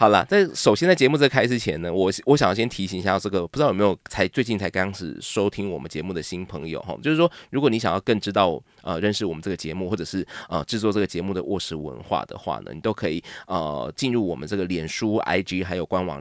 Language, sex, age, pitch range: Chinese, male, 20-39, 90-110 Hz